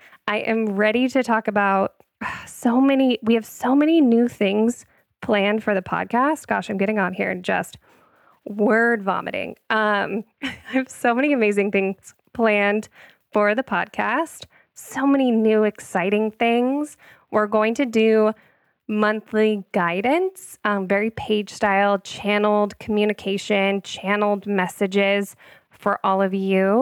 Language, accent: English, American